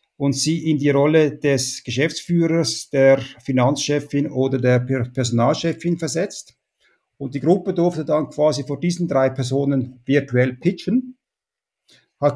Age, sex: 50-69, male